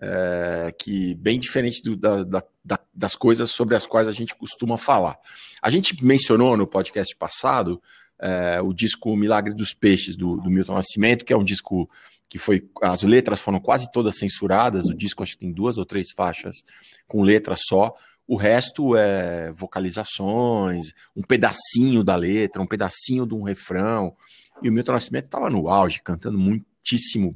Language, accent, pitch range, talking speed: Portuguese, Brazilian, 100-140 Hz, 170 wpm